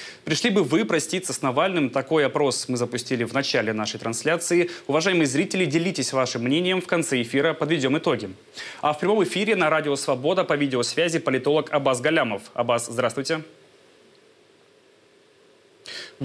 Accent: native